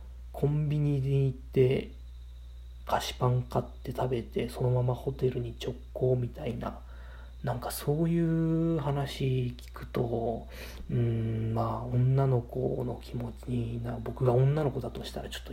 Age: 40-59